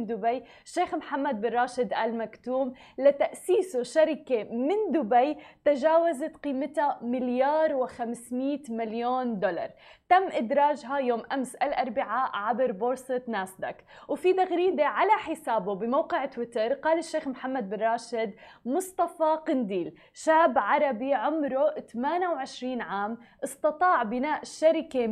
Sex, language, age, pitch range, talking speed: female, Arabic, 20-39, 235-300 Hz, 105 wpm